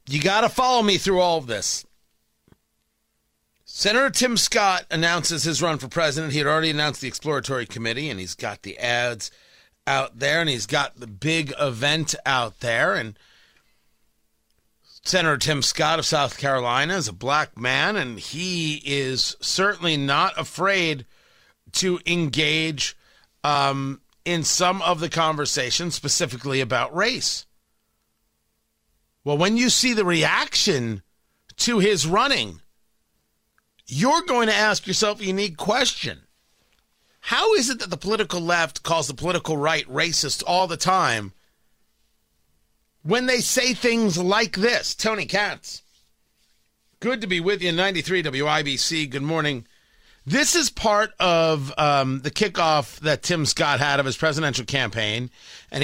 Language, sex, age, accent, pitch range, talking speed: English, male, 40-59, American, 140-185 Hz, 140 wpm